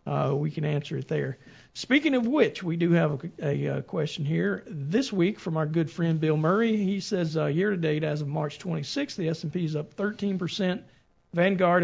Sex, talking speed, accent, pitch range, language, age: male, 200 wpm, American, 150-185 Hz, English, 50-69